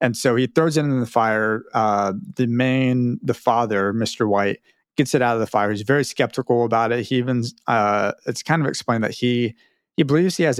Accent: American